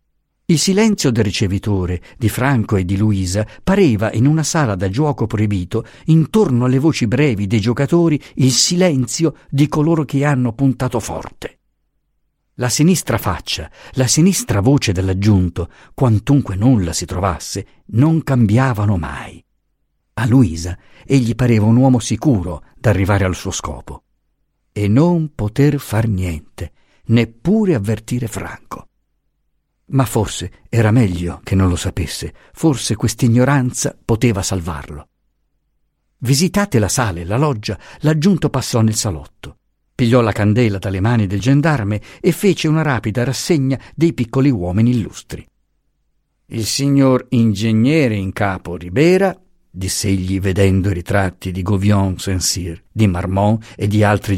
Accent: native